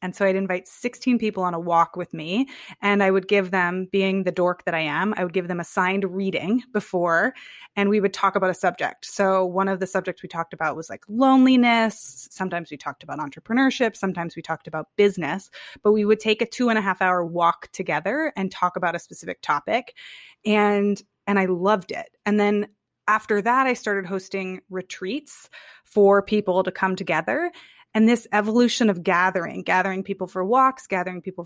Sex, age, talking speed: female, 20-39, 195 wpm